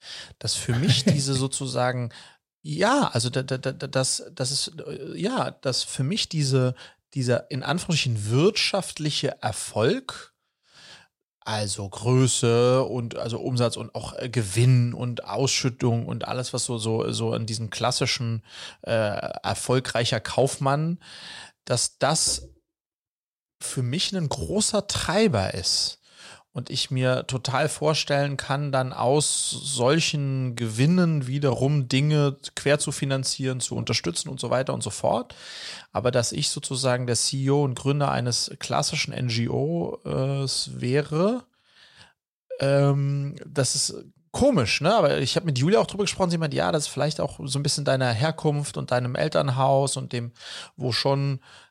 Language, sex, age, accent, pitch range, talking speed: German, male, 30-49, German, 125-145 Hz, 140 wpm